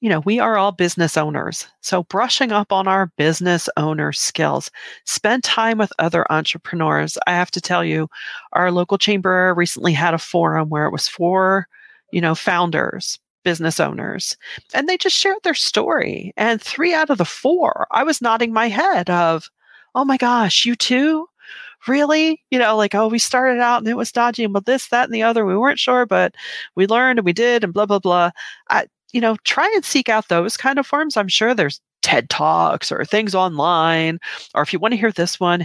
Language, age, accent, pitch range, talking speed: English, 40-59, American, 180-245 Hz, 205 wpm